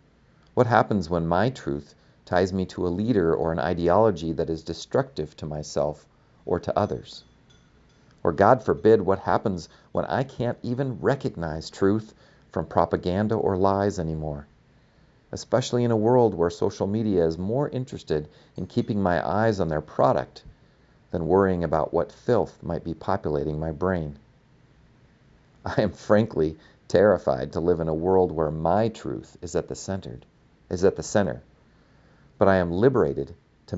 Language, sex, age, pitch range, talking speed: English, male, 40-59, 80-100 Hz, 160 wpm